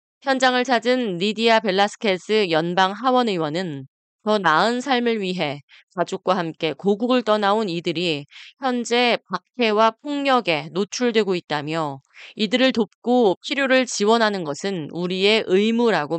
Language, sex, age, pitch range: Korean, female, 20-39, 170-240 Hz